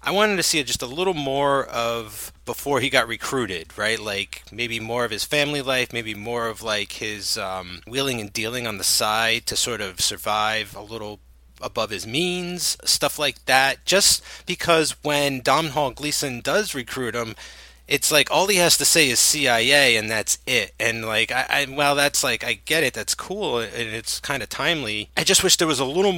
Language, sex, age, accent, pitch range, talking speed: English, male, 30-49, American, 110-145 Hz, 205 wpm